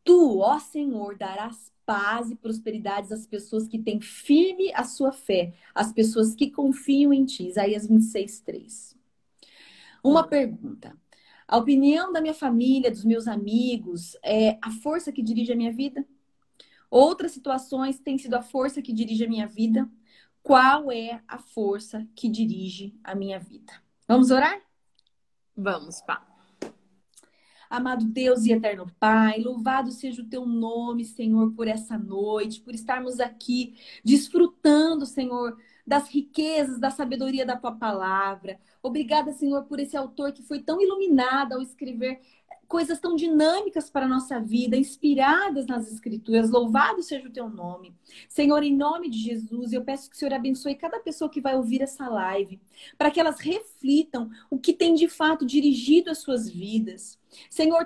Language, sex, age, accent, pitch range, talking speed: Portuguese, female, 30-49, Brazilian, 225-290 Hz, 155 wpm